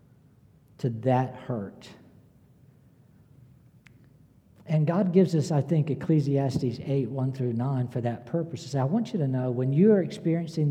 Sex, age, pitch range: male, 60-79, 125-155 Hz